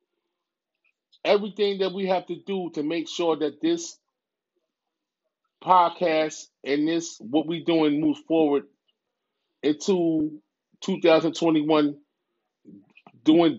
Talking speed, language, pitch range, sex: 95 wpm, English, 145-180 Hz, male